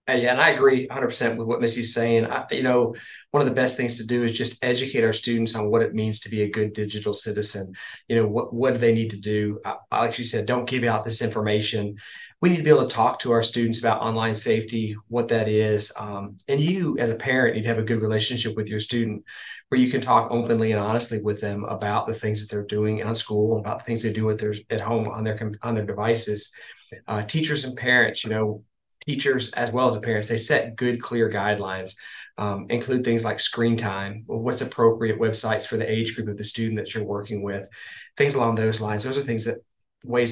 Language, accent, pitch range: English, American, 105-120 Hz